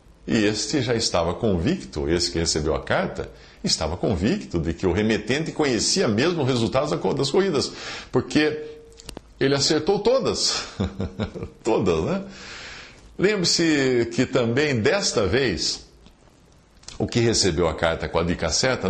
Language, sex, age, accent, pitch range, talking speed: English, male, 60-79, Brazilian, 90-130 Hz, 135 wpm